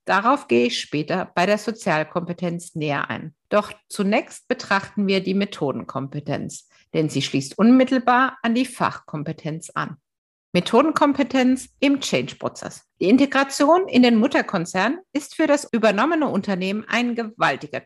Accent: German